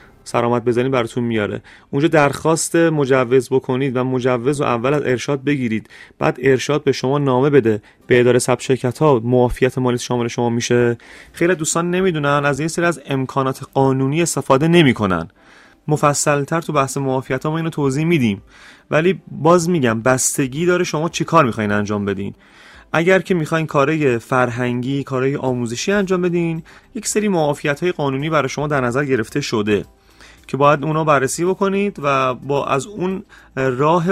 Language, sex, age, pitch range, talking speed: Persian, male, 30-49, 125-165 Hz, 155 wpm